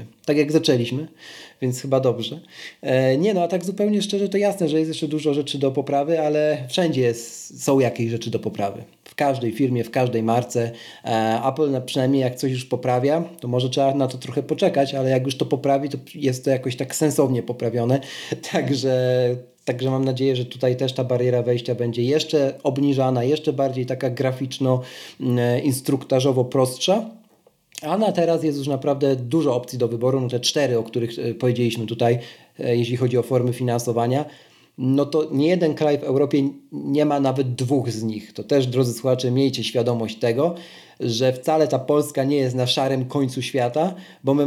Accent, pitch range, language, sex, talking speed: native, 120-145 Hz, Polish, male, 175 wpm